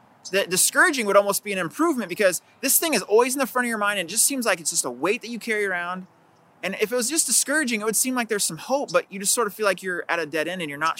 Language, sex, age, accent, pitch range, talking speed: English, male, 20-39, American, 150-215 Hz, 315 wpm